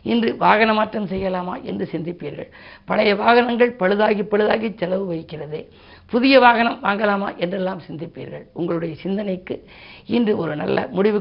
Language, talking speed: Tamil, 125 wpm